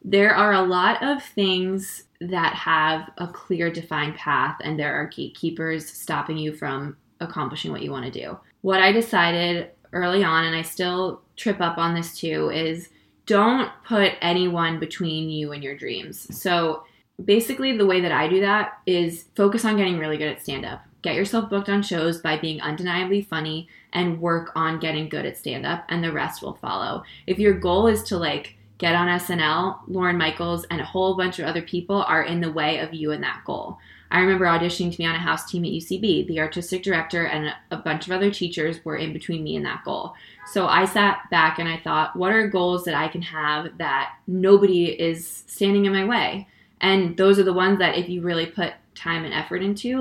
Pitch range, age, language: 160-190 Hz, 20-39, English